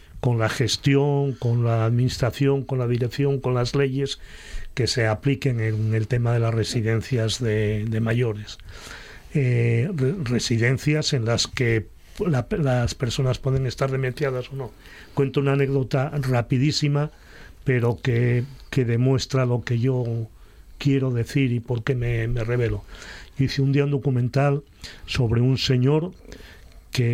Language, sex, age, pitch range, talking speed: Spanish, male, 40-59, 115-135 Hz, 145 wpm